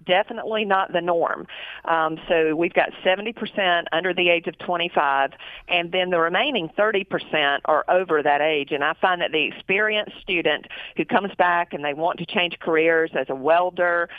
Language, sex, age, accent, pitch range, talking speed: English, female, 50-69, American, 145-175 Hz, 185 wpm